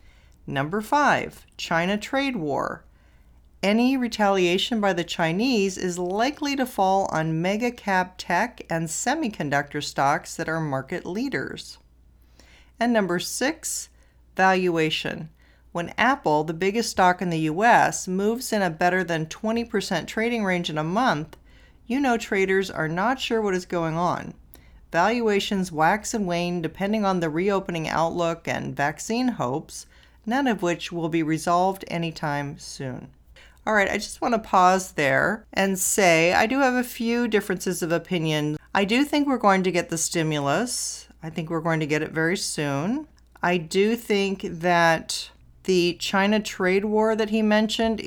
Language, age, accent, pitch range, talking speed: English, 40-59, American, 165-210 Hz, 155 wpm